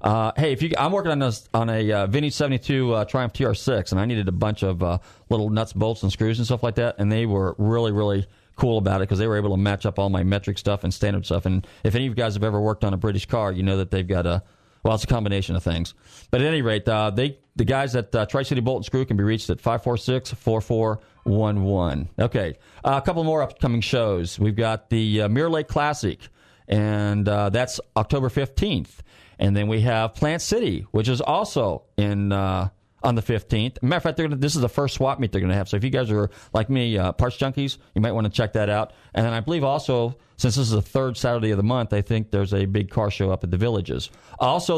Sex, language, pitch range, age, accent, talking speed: male, English, 100-130 Hz, 40-59, American, 255 wpm